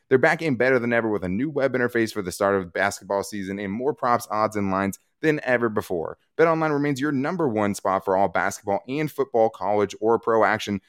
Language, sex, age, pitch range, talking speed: English, male, 20-39, 100-130 Hz, 225 wpm